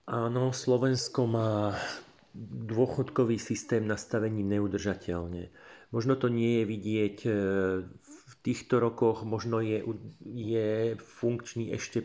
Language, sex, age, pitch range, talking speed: Slovak, male, 40-59, 100-115 Hz, 100 wpm